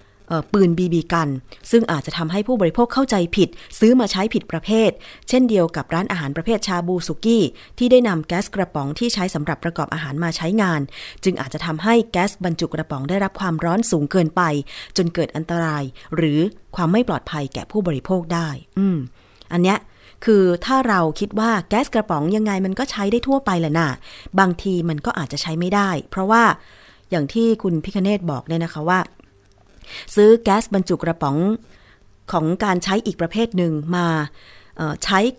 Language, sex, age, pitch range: Thai, female, 20-39, 155-205 Hz